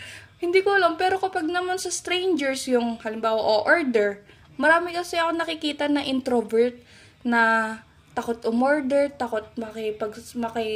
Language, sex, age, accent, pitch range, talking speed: Filipino, female, 20-39, native, 210-260 Hz, 140 wpm